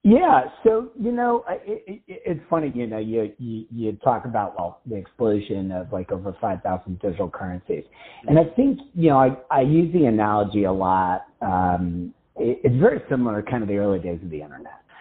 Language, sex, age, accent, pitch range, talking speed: English, male, 40-59, American, 95-120 Hz, 205 wpm